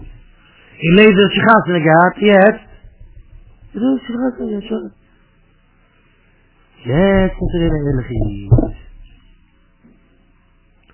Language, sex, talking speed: English, male, 55 wpm